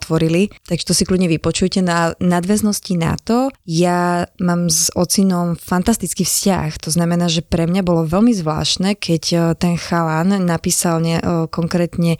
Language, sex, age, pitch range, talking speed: Slovak, female, 20-39, 160-180 Hz, 150 wpm